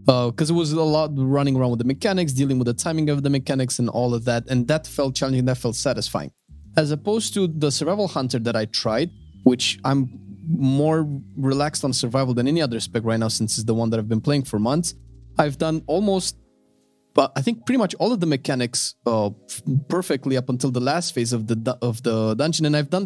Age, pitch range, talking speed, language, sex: 20-39, 120-155 Hz, 225 wpm, English, male